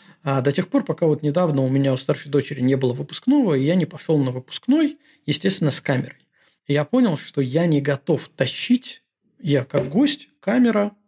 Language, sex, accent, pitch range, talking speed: Russian, male, native, 135-185 Hz, 195 wpm